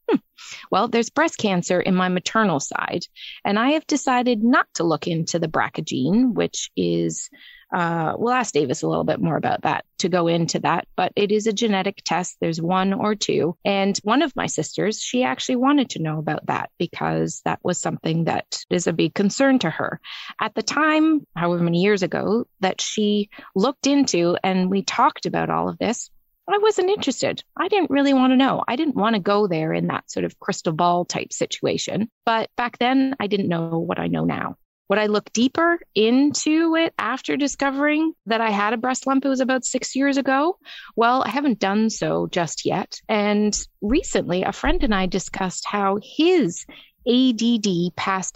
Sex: female